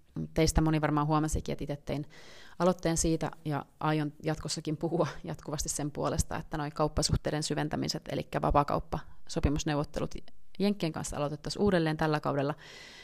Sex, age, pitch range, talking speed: female, 30-49, 140-160 Hz, 120 wpm